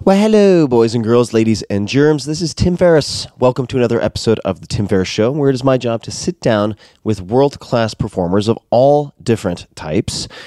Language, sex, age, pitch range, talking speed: English, male, 30-49, 90-115 Hz, 210 wpm